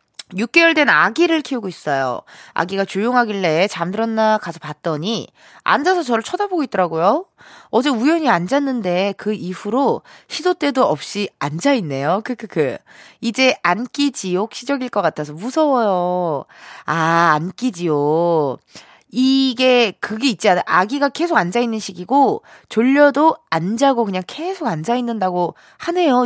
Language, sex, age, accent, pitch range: Korean, female, 20-39, native, 175-260 Hz